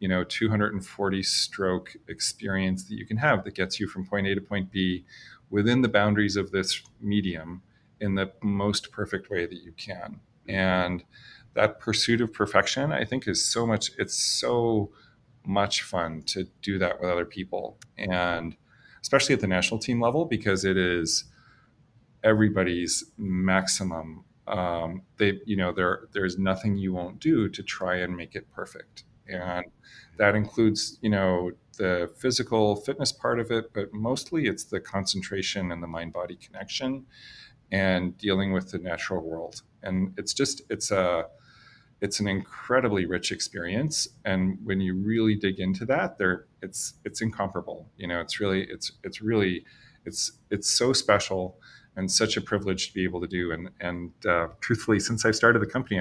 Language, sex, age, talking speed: English, male, 30-49, 165 wpm